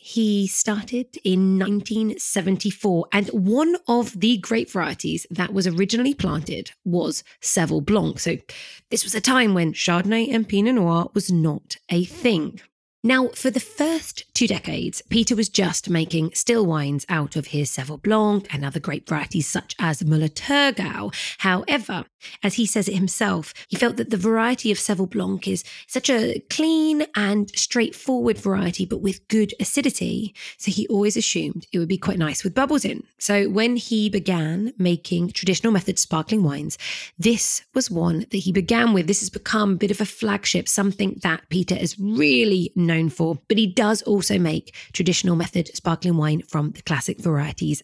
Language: English